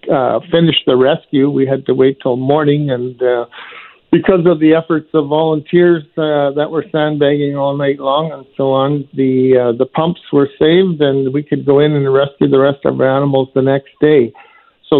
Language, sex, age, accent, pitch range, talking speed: English, male, 50-69, American, 130-155 Hz, 200 wpm